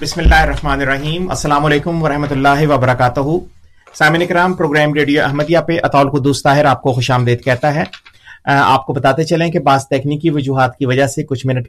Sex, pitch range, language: male, 130-160 Hz, Urdu